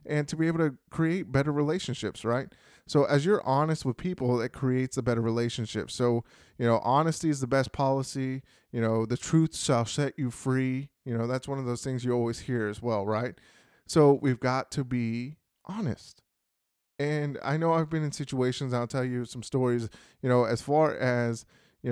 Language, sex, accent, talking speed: English, male, American, 200 wpm